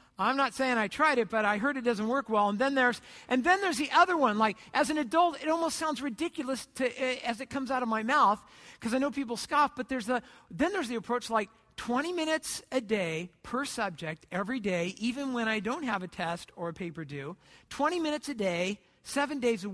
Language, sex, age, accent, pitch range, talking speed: English, male, 50-69, American, 205-275 Hz, 235 wpm